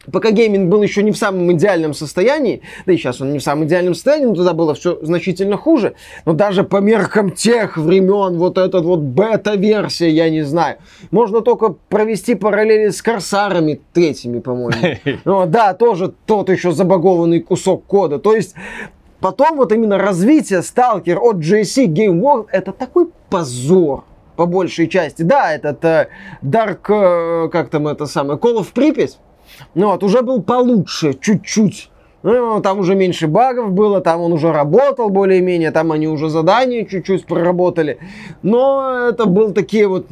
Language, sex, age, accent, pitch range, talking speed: Russian, male, 20-39, native, 170-220 Hz, 165 wpm